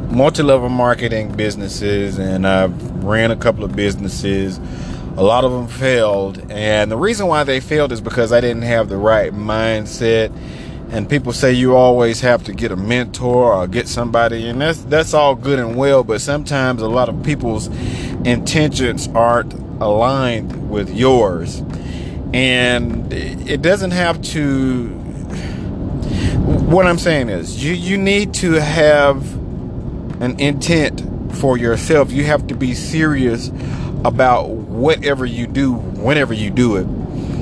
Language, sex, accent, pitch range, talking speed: English, male, American, 115-145 Hz, 145 wpm